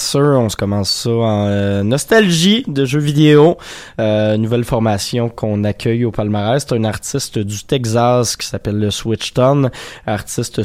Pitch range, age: 105-135 Hz, 20-39